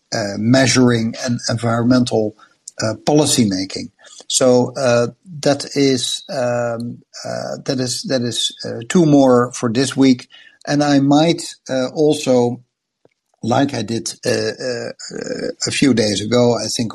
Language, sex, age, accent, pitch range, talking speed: English, male, 60-79, Dutch, 110-130 Hz, 140 wpm